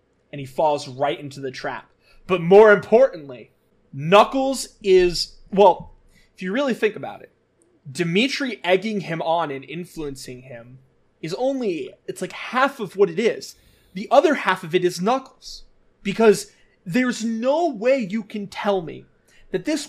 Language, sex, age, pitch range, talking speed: English, male, 20-39, 175-235 Hz, 155 wpm